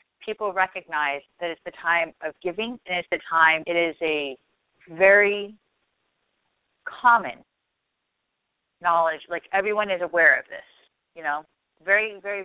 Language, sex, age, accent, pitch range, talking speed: English, female, 30-49, American, 165-210 Hz, 135 wpm